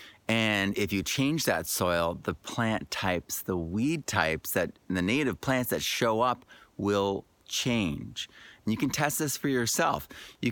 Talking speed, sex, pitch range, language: 165 wpm, male, 100-130 Hz, English